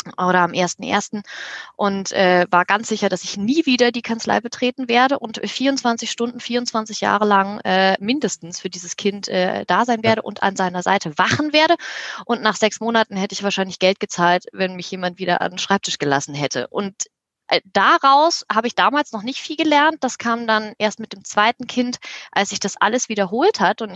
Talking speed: 200 wpm